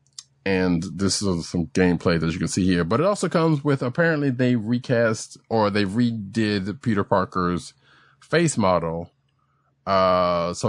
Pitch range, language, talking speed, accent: 90-115 Hz, English, 150 wpm, American